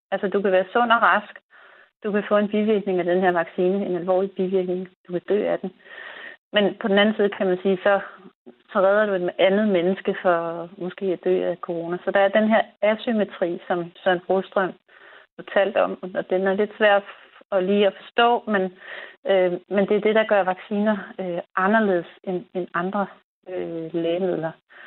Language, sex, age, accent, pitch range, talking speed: Danish, female, 40-59, native, 180-210 Hz, 190 wpm